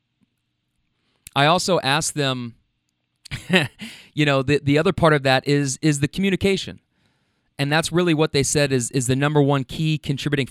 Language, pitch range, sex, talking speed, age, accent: English, 125-175 Hz, male, 165 wpm, 30-49, American